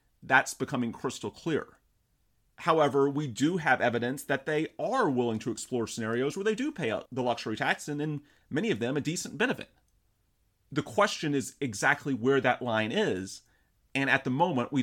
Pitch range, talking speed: 115-135 Hz, 180 wpm